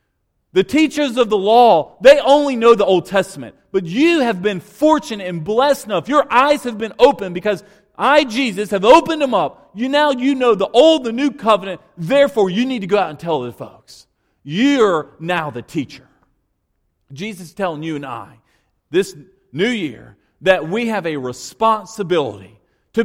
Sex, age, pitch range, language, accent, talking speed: male, 40-59, 135-220 Hz, English, American, 180 wpm